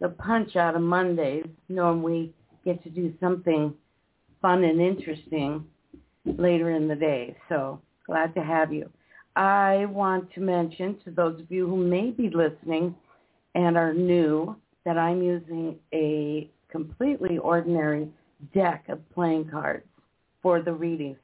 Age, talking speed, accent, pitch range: 50-69, 145 wpm, American, 160-185 Hz